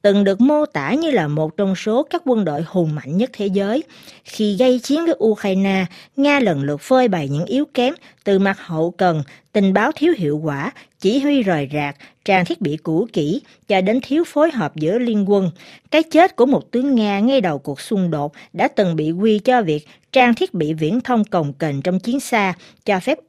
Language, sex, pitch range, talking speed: Vietnamese, female, 165-245 Hz, 220 wpm